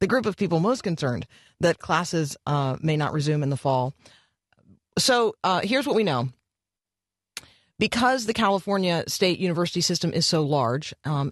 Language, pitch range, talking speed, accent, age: English, 140-180 Hz, 165 wpm, American, 40-59